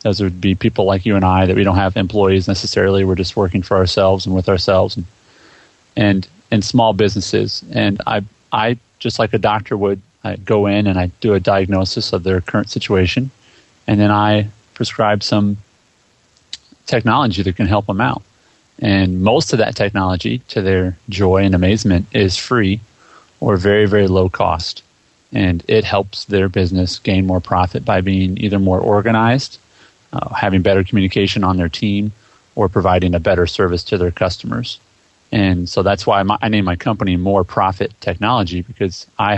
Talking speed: 180 wpm